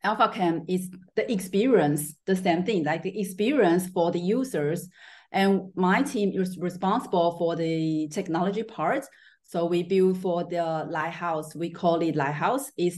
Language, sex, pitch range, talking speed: English, female, 170-200 Hz, 155 wpm